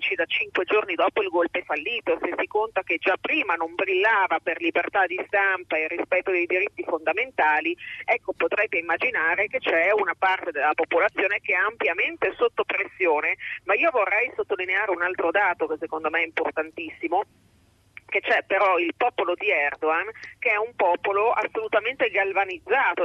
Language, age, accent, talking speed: Italian, 40-59, native, 165 wpm